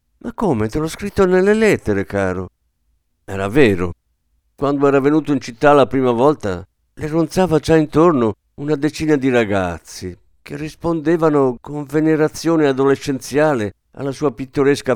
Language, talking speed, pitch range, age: Italian, 135 wpm, 95-155 Hz, 50-69